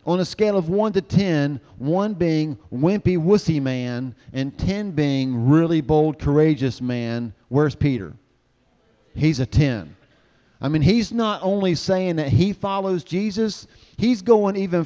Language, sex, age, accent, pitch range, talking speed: English, male, 40-59, American, 120-175 Hz, 150 wpm